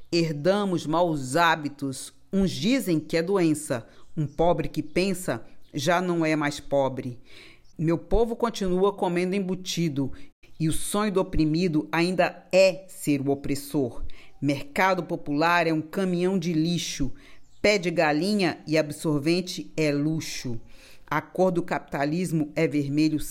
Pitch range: 145-185 Hz